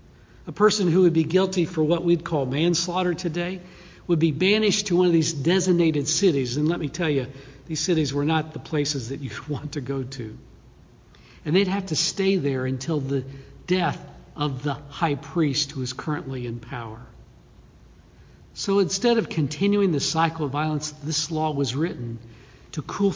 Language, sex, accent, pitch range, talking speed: English, male, American, 145-185 Hz, 180 wpm